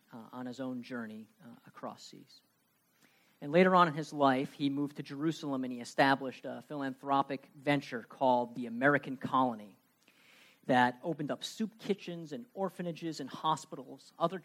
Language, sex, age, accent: English, male, 40-59, American